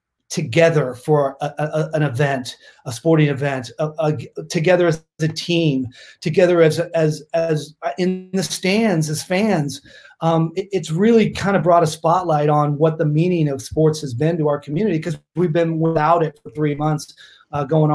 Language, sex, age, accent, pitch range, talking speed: English, male, 30-49, American, 145-165 Hz, 180 wpm